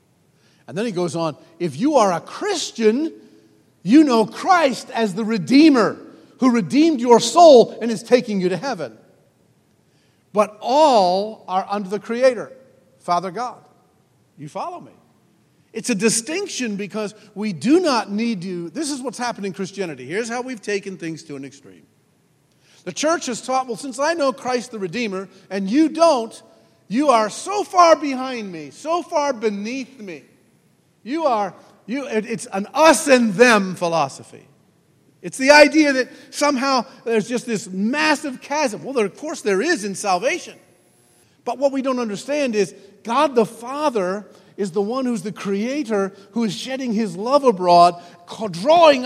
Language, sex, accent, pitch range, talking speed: English, male, American, 200-275 Hz, 165 wpm